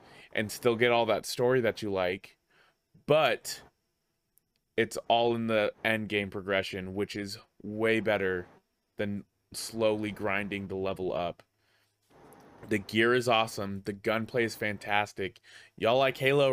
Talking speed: 140 wpm